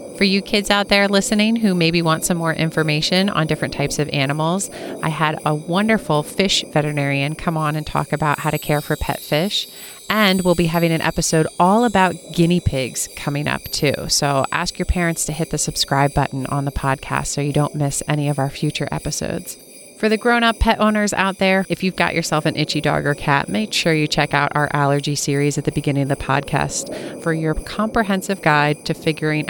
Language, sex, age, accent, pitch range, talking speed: English, female, 30-49, American, 145-180 Hz, 210 wpm